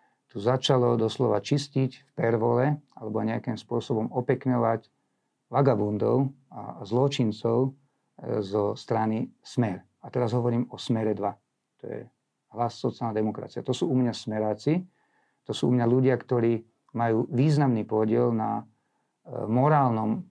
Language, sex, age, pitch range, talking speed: Slovak, male, 50-69, 115-140 Hz, 125 wpm